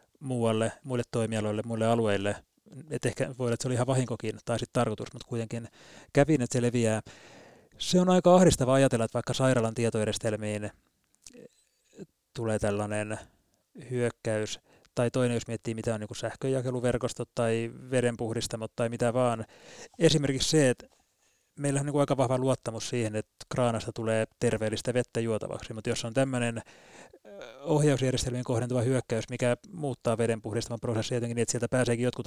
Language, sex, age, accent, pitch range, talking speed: Finnish, male, 30-49, native, 115-130 Hz, 150 wpm